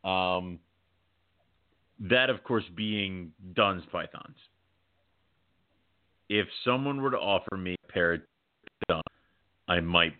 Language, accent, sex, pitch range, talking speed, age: English, American, male, 90-110 Hz, 110 wpm, 30-49